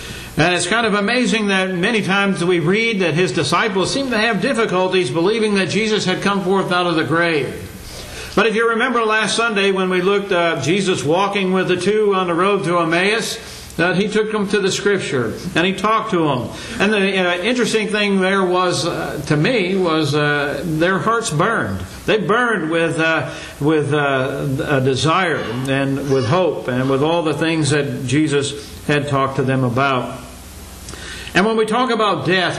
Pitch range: 160-205 Hz